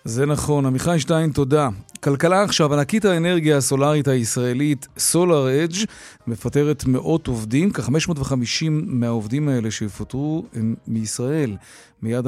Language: Hebrew